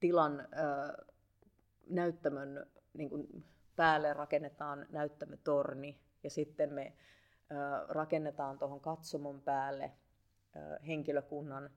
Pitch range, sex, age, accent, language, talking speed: 140-160 Hz, female, 30-49, native, Finnish, 80 wpm